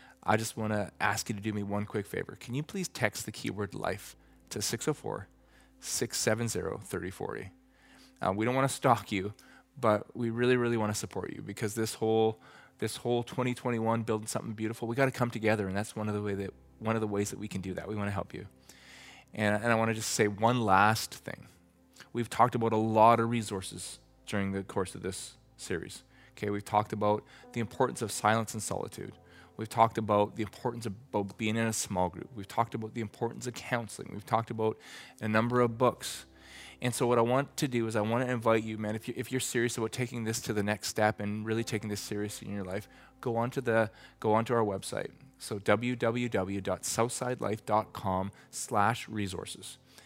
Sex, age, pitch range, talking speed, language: male, 20-39, 105-120 Hz, 205 wpm, English